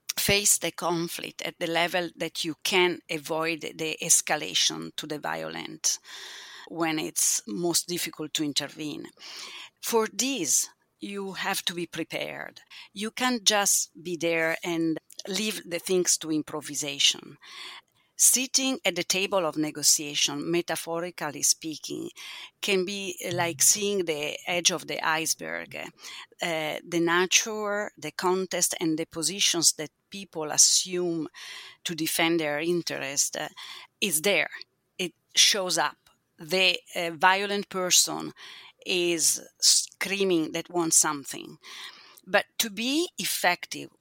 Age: 40-59